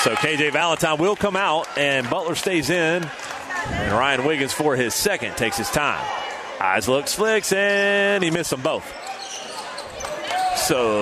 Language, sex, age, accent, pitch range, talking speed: English, male, 40-59, American, 135-180 Hz, 150 wpm